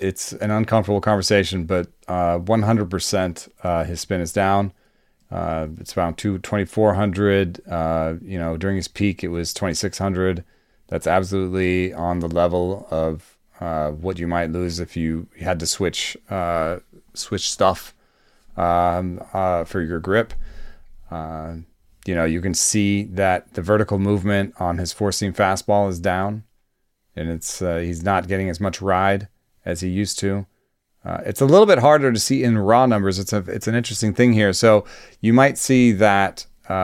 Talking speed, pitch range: 170 wpm, 85-105 Hz